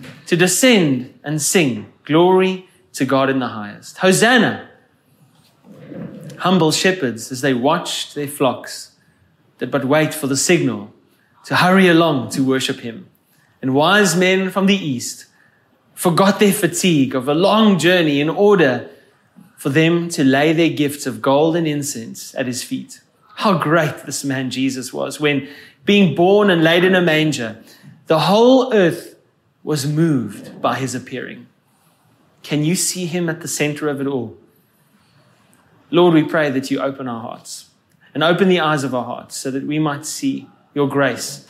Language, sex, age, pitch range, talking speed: English, male, 20-39, 135-175 Hz, 160 wpm